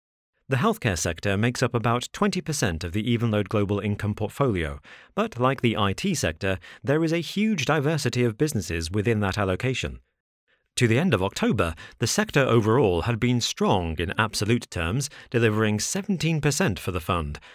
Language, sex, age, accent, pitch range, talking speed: English, male, 40-59, British, 95-125 Hz, 160 wpm